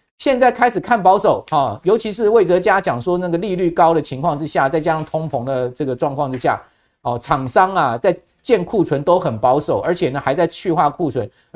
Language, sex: Chinese, male